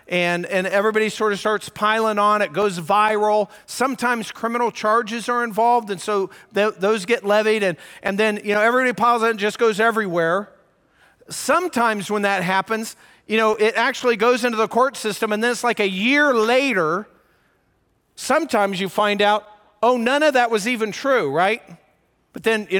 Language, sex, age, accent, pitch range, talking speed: English, male, 40-59, American, 200-245 Hz, 180 wpm